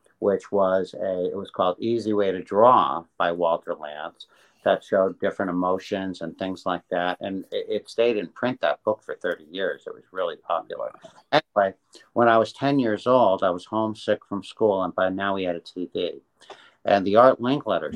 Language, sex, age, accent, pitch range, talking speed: English, male, 60-79, American, 90-110 Hz, 200 wpm